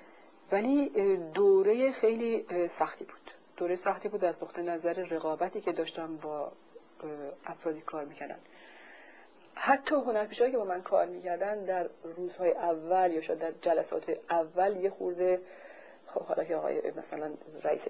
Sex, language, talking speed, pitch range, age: female, Persian, 135 wpm, 170-210 Hz, 40-59